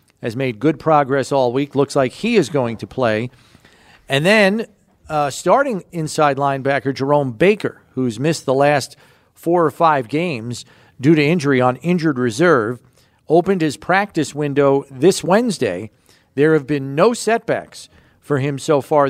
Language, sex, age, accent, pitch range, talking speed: English, male, 40-59, American, 130-155 Hz, 155 wpm